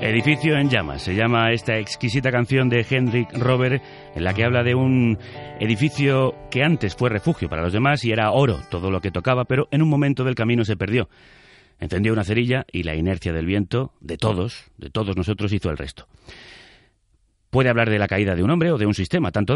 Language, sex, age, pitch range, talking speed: Spanish, male, 30-49, 105-135 Hz, 210 wpm